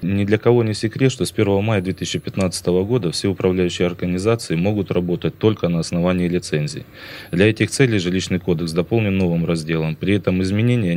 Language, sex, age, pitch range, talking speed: Russian, male, 20-39, 85-100 Hz, 170 wpm